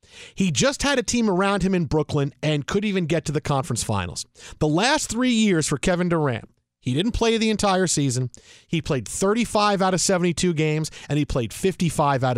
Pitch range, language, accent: 155-215 Hz, English, American